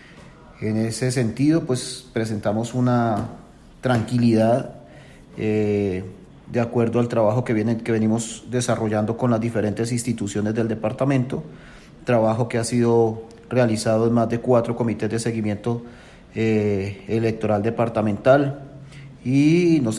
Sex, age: male, 40-59